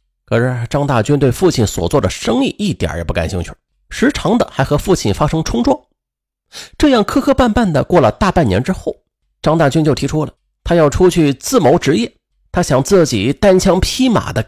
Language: Chinese